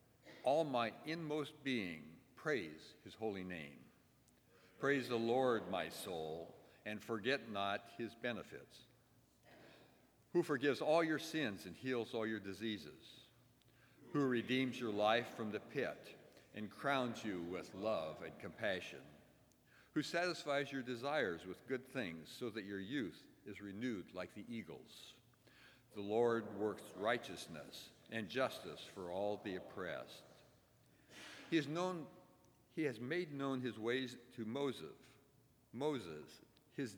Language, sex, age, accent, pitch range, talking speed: English, male, 60-79, American, 100-130 Hz, 130 wpm